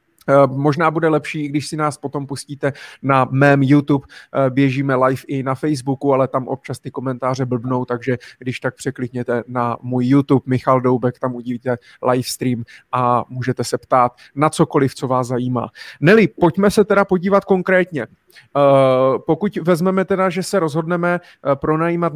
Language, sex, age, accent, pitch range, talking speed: Czech, male, 30-49, native, 130-155 Hz, 150 wpm